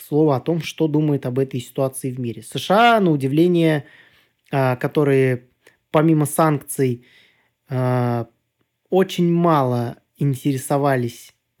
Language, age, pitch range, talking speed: Russian, 20-39, 130-160 Hz, 100 wpm